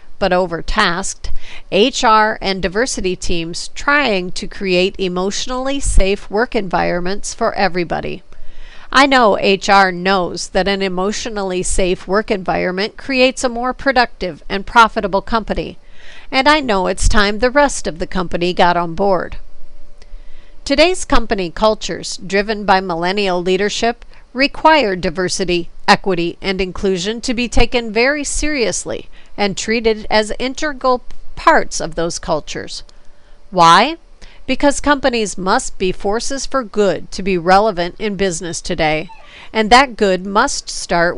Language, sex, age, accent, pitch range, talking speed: English, female, 50-69, American, 185-240 Hz, 130 wpm